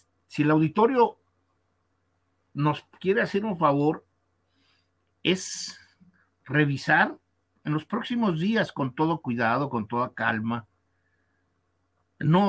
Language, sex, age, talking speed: Spanish, male, 50-69, 100 wpm